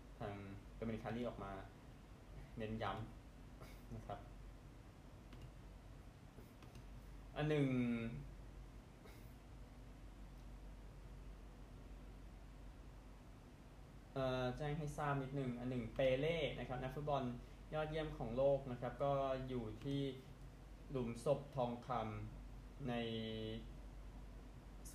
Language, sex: Thai, male